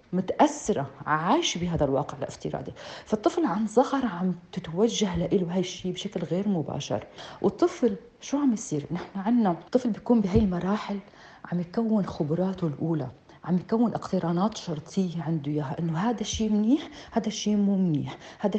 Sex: female